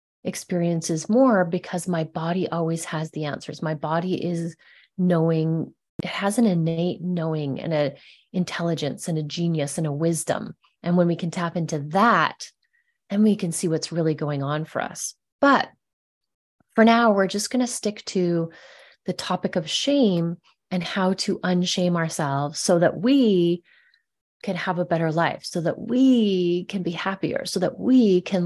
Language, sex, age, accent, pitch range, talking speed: English, female, 30-49, American, 165-205 Hz, 170 wpm